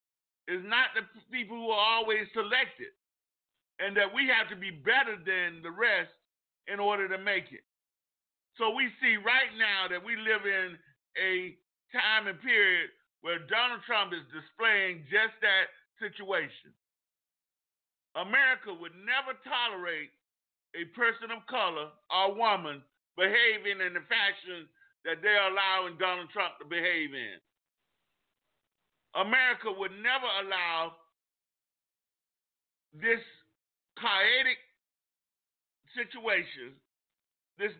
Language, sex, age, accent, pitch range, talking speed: English, male, 50-69, American, 180-225 Hz, 115 wpm